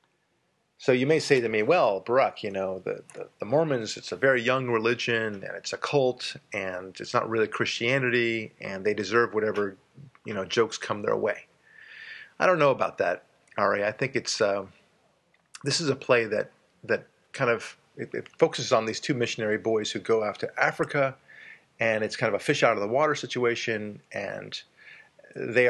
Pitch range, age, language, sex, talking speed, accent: 105-130 Hz, 40-59, English, male, 190 wpm, American